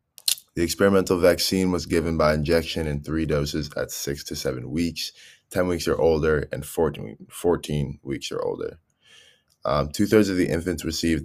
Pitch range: 75-85 Hz